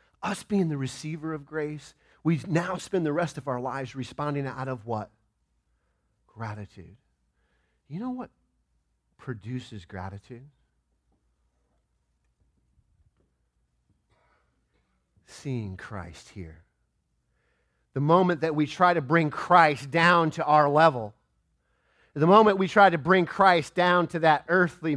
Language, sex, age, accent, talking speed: English, male, 40-59, American, 120 wpm